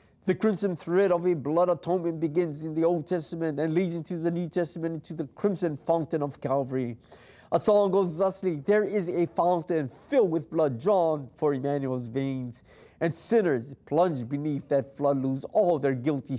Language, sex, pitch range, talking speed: English, male, 135-175 Hz, 180 wpm